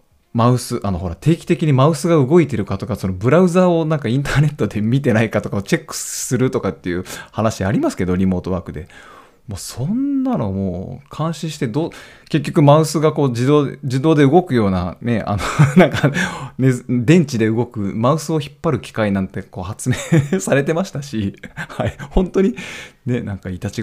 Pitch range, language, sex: 100-140 Hz, Japanese, male